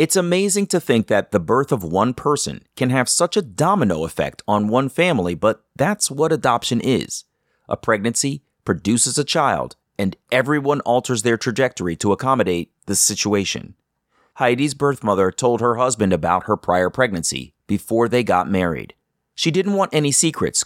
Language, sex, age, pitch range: English, male, 30-49, 105-145 Hz